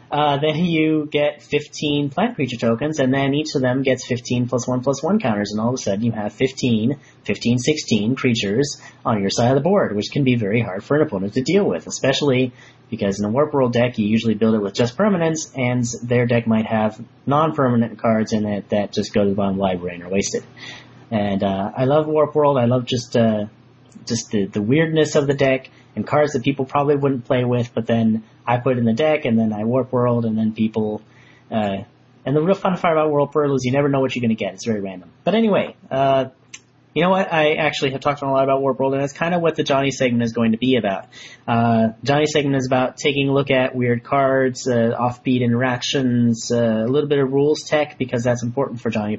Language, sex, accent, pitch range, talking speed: English, male, American, 115-140 Hz, 240 wpm